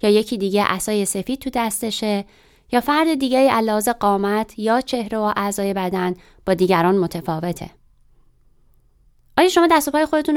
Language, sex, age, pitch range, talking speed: Persian, female, 20-39, 200-270 Hz, 145 wpm